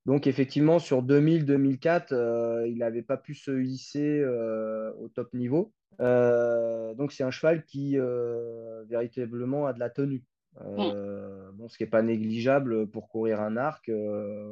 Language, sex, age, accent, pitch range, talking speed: French, male, 20-39, French, 110-130 Hz, 160 wpm